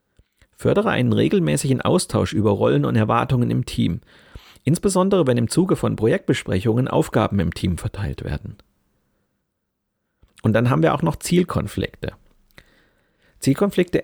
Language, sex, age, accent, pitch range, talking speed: German, male, 40-59, German, 95-125 Hz, 125 wpm